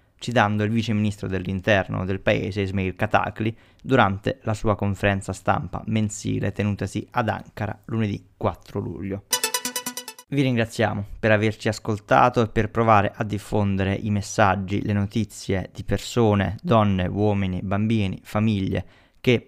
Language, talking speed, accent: Italian, 125 wpm, native